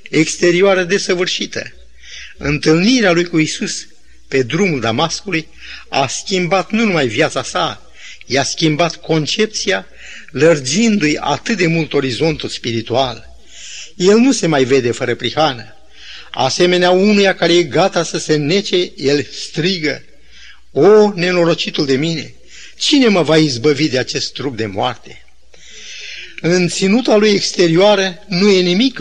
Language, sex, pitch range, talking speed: Romanian, male, 135-185 Hz, 125 wpm